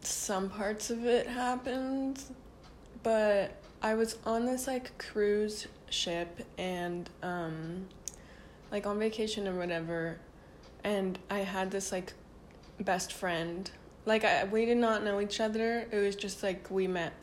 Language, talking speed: English, 145 wpm